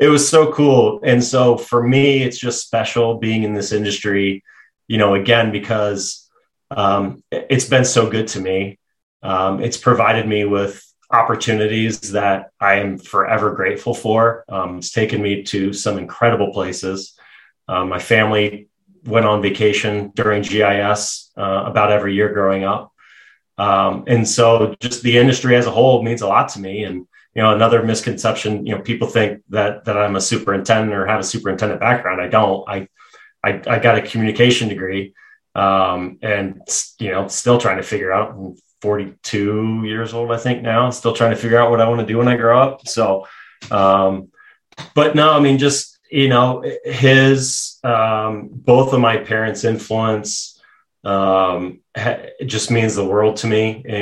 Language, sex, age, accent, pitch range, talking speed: English, male, 30-49, American, 100-120 Hz, 175 wpm